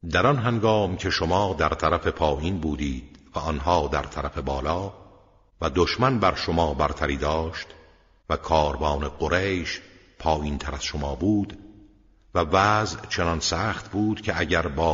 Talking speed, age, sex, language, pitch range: 140 wpm, 50-69, male, Persian, 75-95 Hz